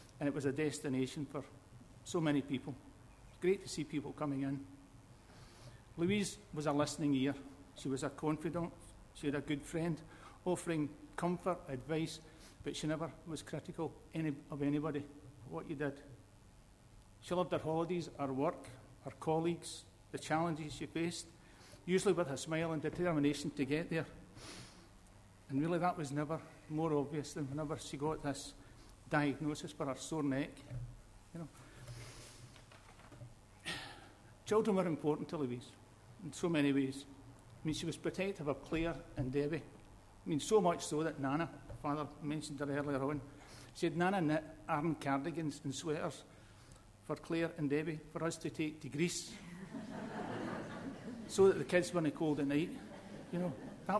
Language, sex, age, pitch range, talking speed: English, male, 60-79, 130-160 Hz, 160 wpm